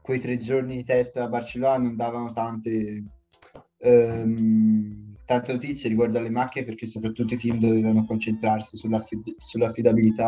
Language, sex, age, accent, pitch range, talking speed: Italian, male, 20-39, native, 110-125 Hz, 135 wpm